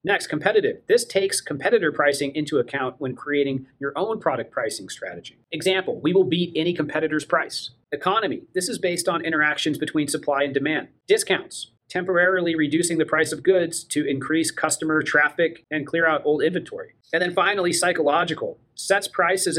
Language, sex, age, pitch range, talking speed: English, male, 40-59, 140-185 Hz, 165 wpm